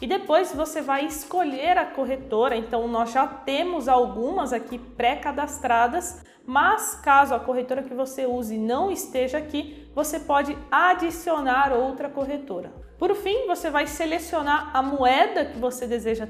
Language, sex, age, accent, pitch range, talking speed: Portuguese, female, 20-39, Brazilian, 245-310 Hz, 145 wpm